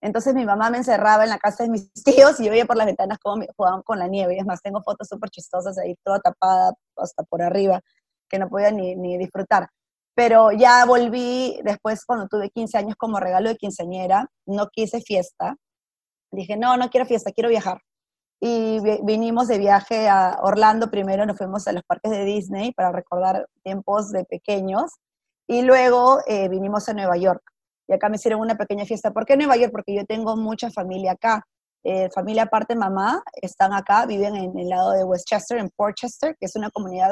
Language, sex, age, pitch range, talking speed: English, female, 20-39, 195-230 Hz, 205 wpm